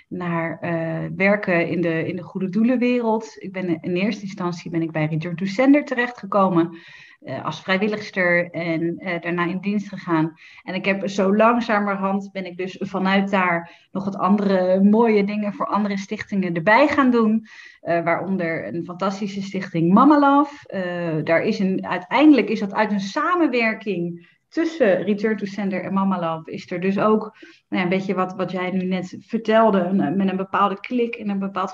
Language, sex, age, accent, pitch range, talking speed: Dutch, female, 30-49, Dutch, 175-215 Hz, 165 wpm